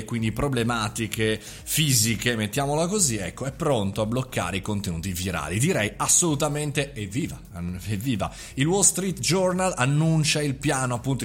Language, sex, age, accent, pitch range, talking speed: Italian, male, 30-49, native, 110-145 Hz, 135 wpm